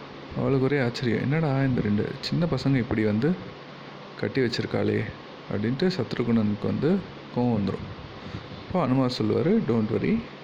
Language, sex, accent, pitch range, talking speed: Tamil, male, native, 105-135 Hz, 120 wpm